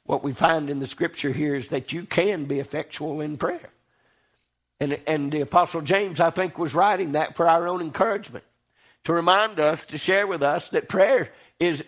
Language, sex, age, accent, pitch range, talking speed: English, male, 50-69, American, 180-280 Hz, 195 wpm